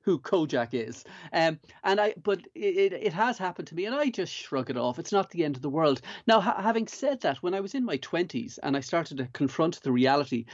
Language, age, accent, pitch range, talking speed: English, 30-49, Irish, 135-190 Hz, 250 wpm